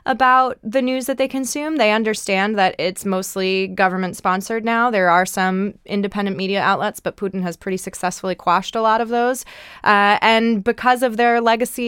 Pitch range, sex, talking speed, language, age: 170-220 Hz, female, 175 wpm, English, 20-39